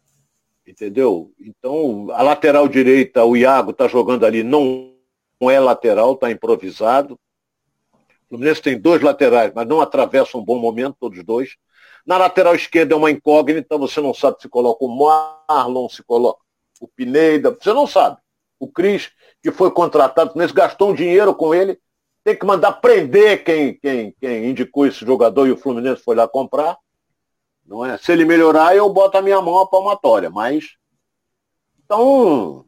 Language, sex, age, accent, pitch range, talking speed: Portuguese, male, 60-79, Brazilian, 135-205 Hz, 160 wpm